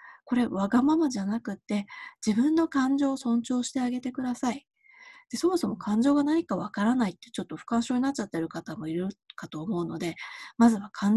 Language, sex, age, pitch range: Japanese, female, 20-39, 185-265 Hz